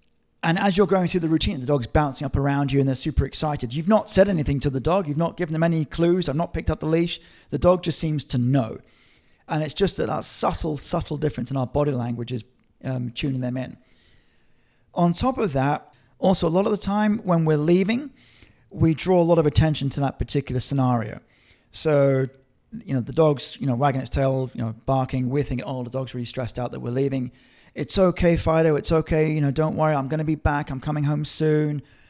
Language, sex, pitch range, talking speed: English, male, 135-170 Hz, 230 wpm